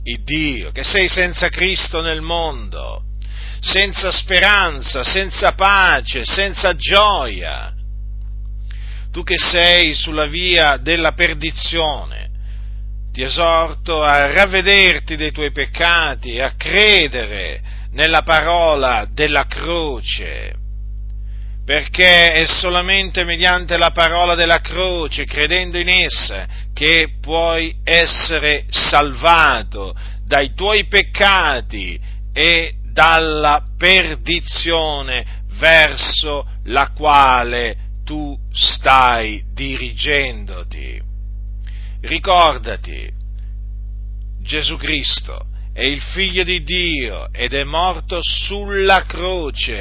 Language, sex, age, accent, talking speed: Italian, male, 40-59, native, 90 wpm